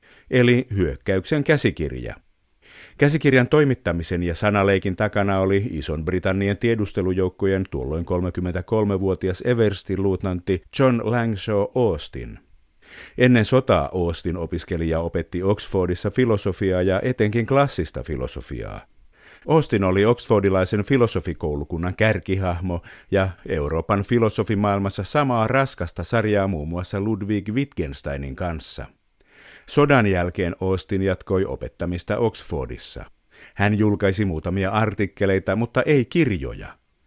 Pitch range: 90-110 Hz